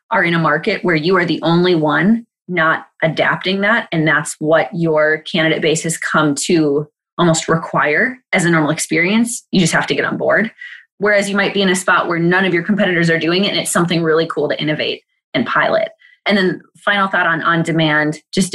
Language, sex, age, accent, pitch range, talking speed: English, female, 20-39, American, 160-195 Hz, 215 wpm